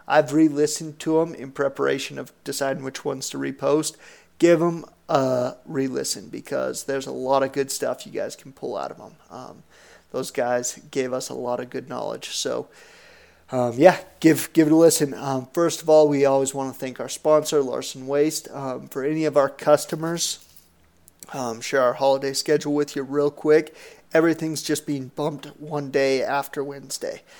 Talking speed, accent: 185 wpm, American